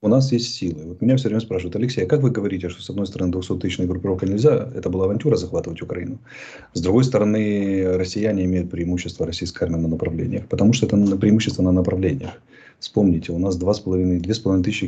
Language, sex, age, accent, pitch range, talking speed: Russian, male, 30-49, native, 90-115 Hz, 210 wpm